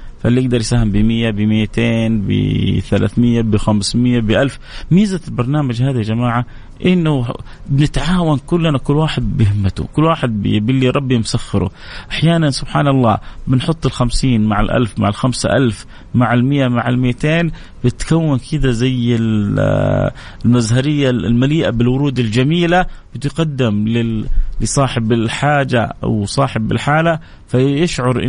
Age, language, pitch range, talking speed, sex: 30-49, English, 110-140 Hz, 110 wpm, male